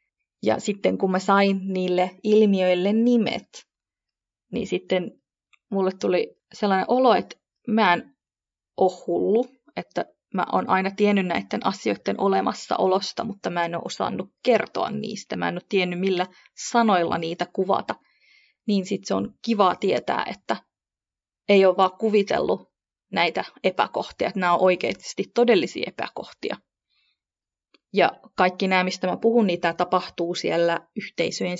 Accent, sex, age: native, female, 30-49